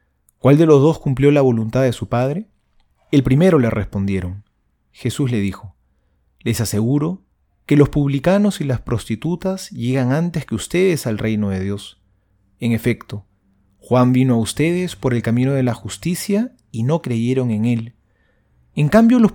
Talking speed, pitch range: 165 wpm, 105-160 Hz